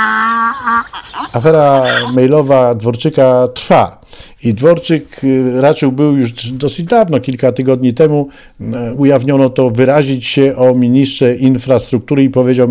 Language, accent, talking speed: Polish, native, 110 wpm